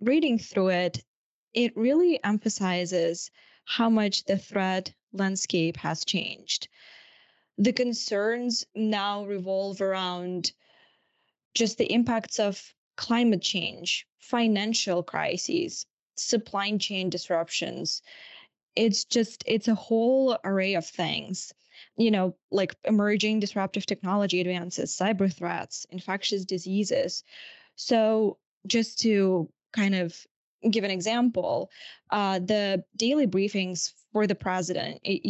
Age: 10-29